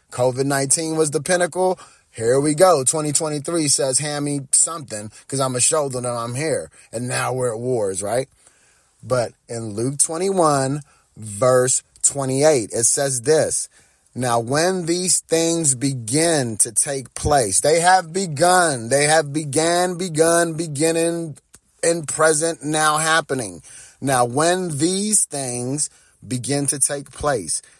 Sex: male